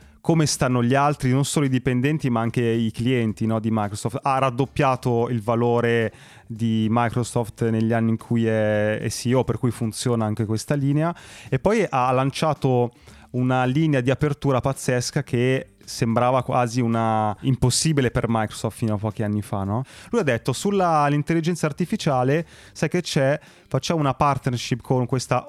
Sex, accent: male, native